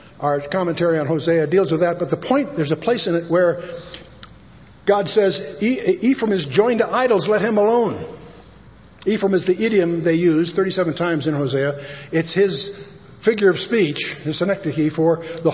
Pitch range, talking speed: 155-195 Hz, 180 wpm